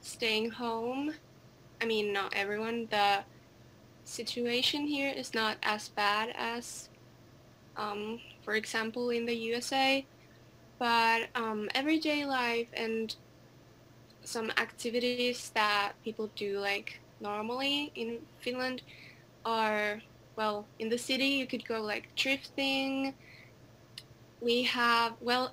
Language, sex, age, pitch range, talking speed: Spanish, female, 10-29, 215-250 Hz, 110 wpm